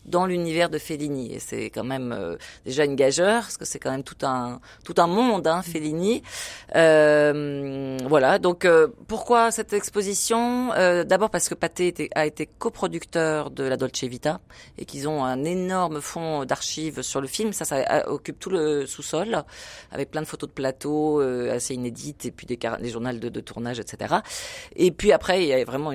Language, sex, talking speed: French, female, 190 wpm